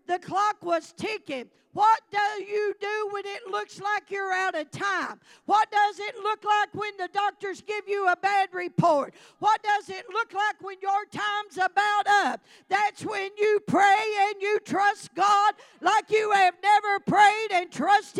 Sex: female